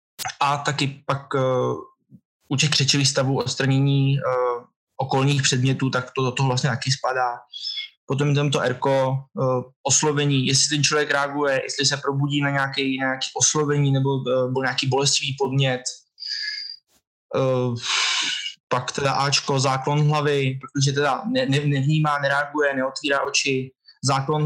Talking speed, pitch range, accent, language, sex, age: 135 wpm, 130-145 Hz, native, Czech, male, 20-39